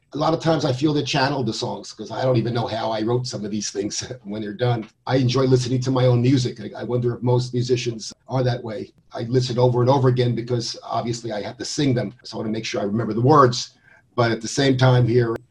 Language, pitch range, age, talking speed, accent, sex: English, 120-135 Hz, 50-69, 265 wpm, American, male